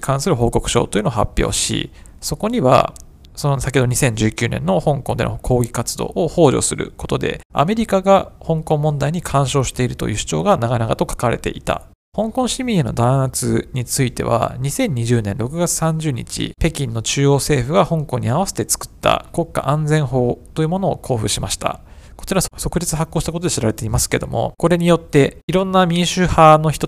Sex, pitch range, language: male, 120-165 Hz, Japanese